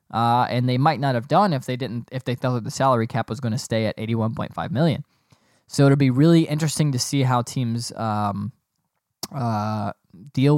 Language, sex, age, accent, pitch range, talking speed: English, male, 10-29, American, 120-145 Hz, 220 wpm